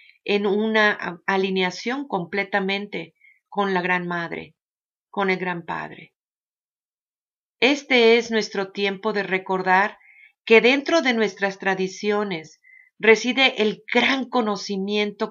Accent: Mexican